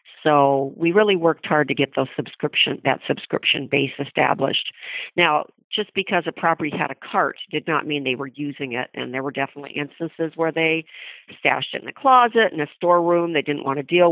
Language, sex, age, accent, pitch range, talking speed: English, female, 50-69, American, 140-165 Hz, 205 wpm